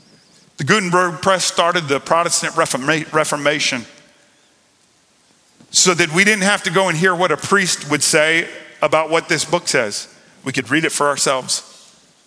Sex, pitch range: male, 170-255 Hz